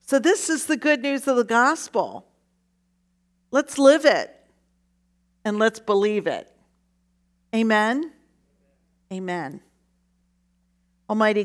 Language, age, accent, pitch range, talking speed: English, 50-69, American, 180-215 Hz, 100 wpm